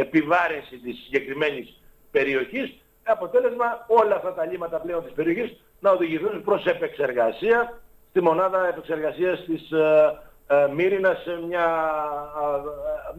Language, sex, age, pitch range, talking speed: Greek, male, 60-79, 160-210 Hz, 120 wpm